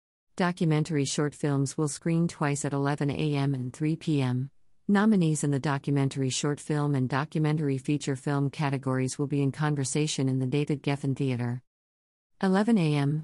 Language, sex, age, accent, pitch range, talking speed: English, female, 50-69, American, 130-160 Hz, 155 wpm